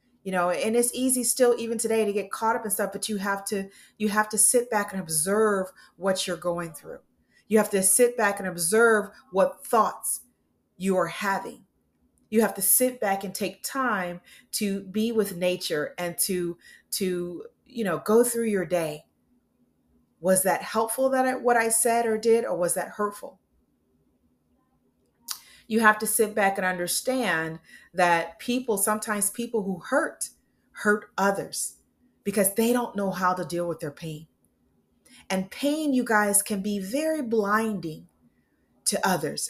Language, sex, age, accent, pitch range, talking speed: English, female, 40-59, American, 180-225 Hz, 170 wpm